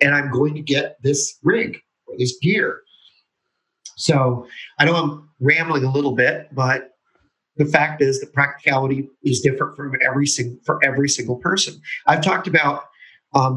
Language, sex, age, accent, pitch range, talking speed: English, male, 40-59, American, 130-155 Hz, 165 wpm